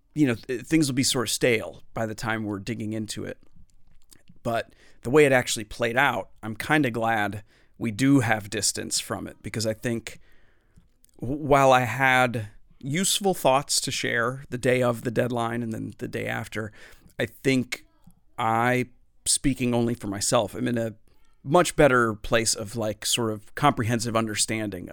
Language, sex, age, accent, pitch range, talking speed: English, male, 40-59, American, 110-125 Hz, 170 wpm